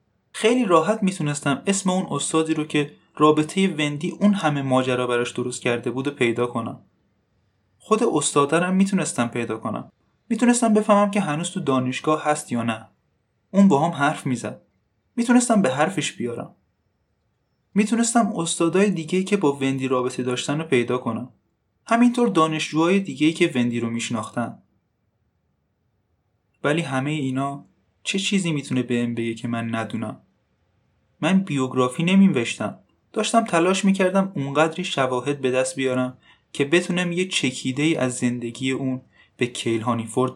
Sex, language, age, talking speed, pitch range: male, Persian, 20-39, 140 wpm, 120-175 Hz